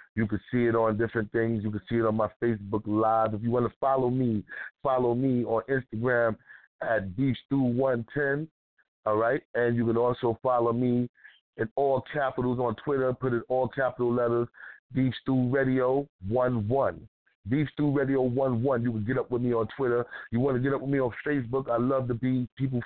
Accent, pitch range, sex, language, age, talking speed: American, 115-135 Hz, male, English, 30-49, 200 wpm